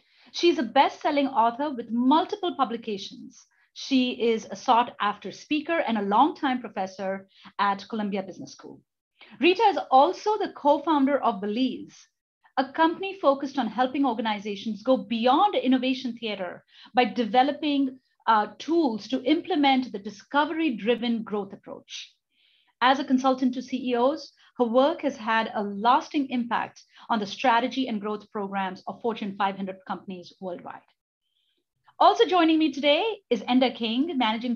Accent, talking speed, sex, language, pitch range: Indian, 140 wpm, female, English, 220-285 Hz